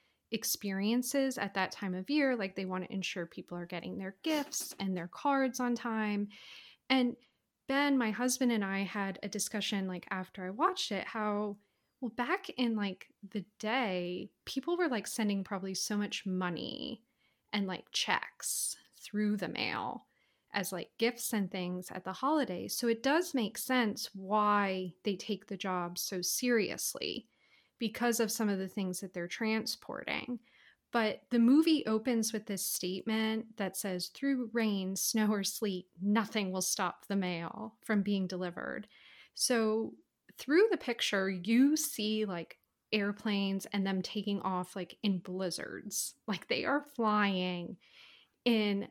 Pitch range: 190-240 Hz